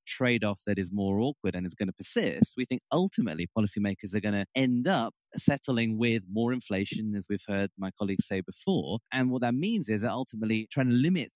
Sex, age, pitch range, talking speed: male, 30-49, 105-125 Hz, 210 wpm